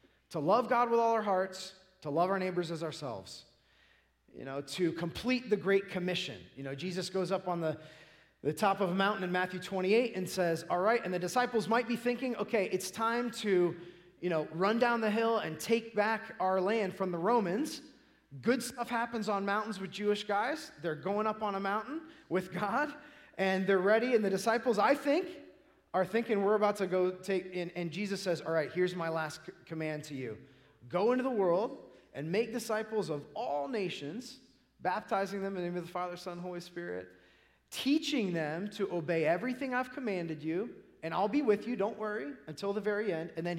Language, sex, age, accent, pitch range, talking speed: English, male, 30-49, American, 175-225 Hz, 205 wpm